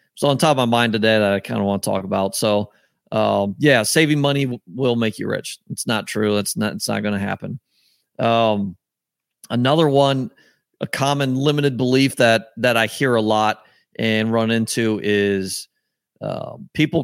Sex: male